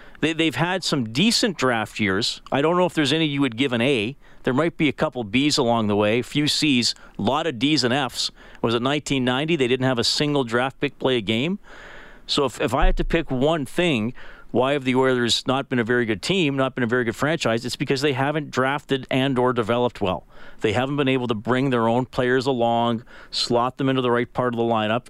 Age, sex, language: 40-59, male, English